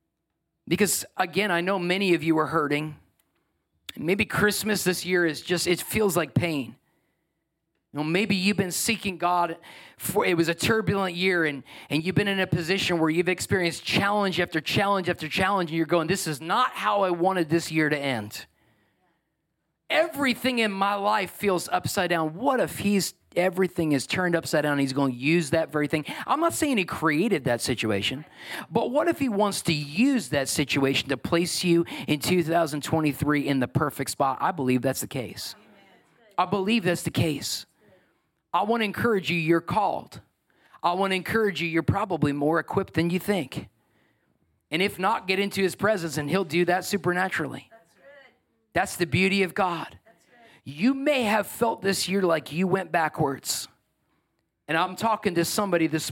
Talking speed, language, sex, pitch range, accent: 180 wpm, English, male, 155-195 Hz, American